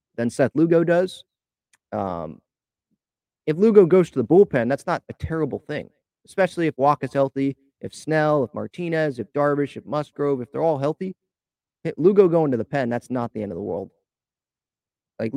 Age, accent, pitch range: 30-49, American, 115-155 Hz